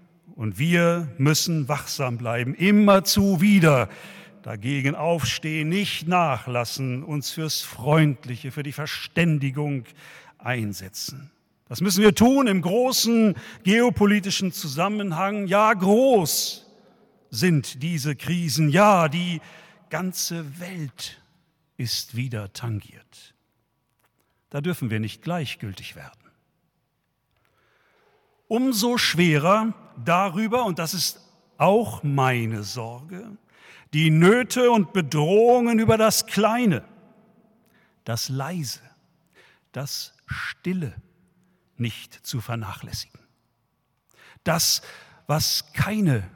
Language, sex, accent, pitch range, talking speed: German, male, German, 130-195 Hz, 90 wpm